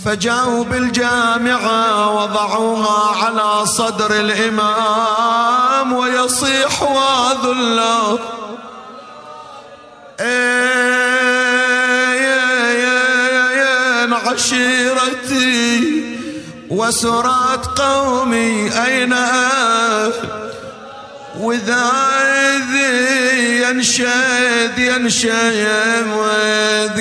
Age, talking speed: 30-49, 40 wpm